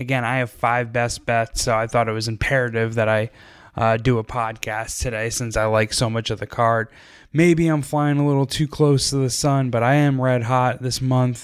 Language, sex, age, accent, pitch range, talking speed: English, male, 10-29, American, 115-130 Hz, 230 wpm